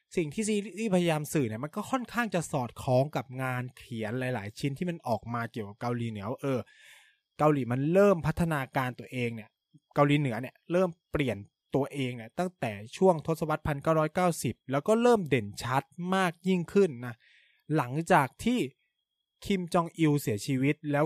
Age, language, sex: 20-39, Thai, male